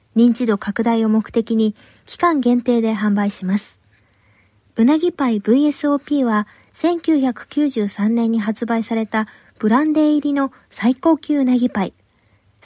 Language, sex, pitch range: Japanese, female, 205-275 Hz